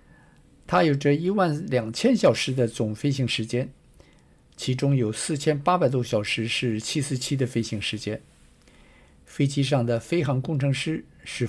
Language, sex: Chinese, male